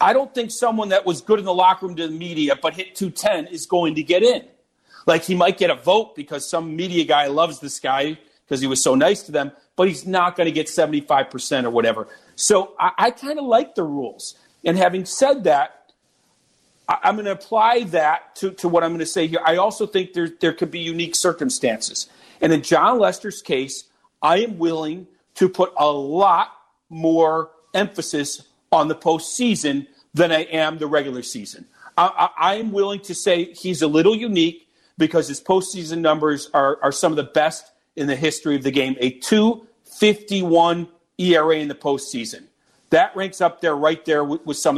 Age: 40-59